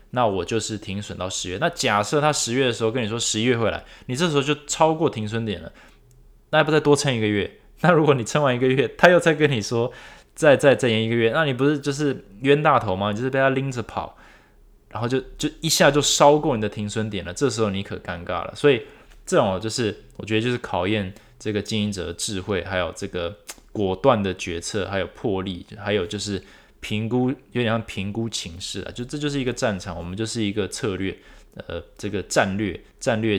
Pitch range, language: 95-130 Hz, Chinese